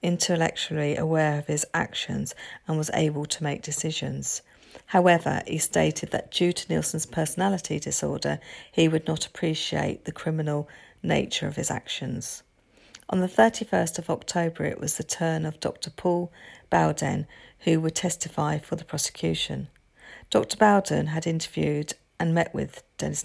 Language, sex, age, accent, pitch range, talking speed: English, female, 40-59, British, 150-175 Hz, 145 wpm